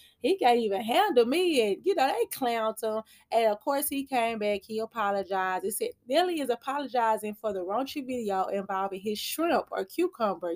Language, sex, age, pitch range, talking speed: English, female, 20-39, 210-285 Hz, 190 wpm